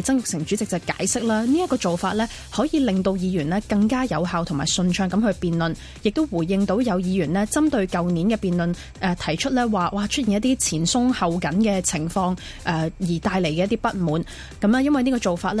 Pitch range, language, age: 175-220 Hz, Chinese, 20-39